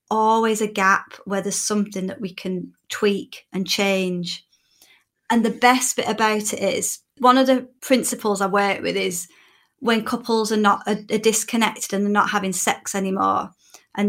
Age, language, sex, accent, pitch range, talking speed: 30-49, English, female, British, 195-220 Hz, 165 wpm